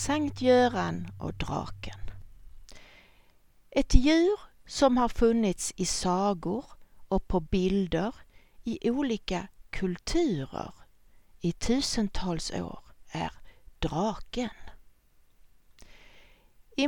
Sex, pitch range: female, 170-245 Hz